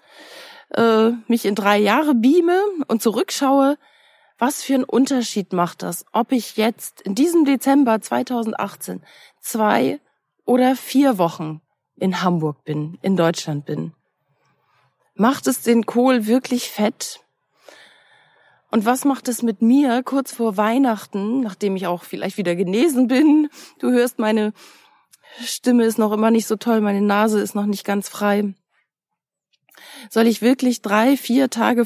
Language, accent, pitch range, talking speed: German, German, 195-250 Hz, 140 wpm